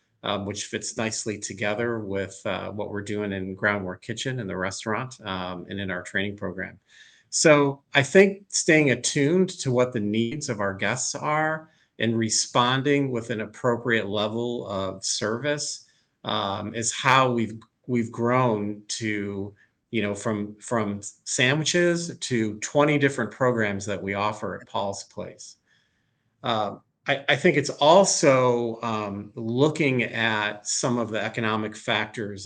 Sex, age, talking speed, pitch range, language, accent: male, 40-59, 145 wpm, 100-125 Hz, English, American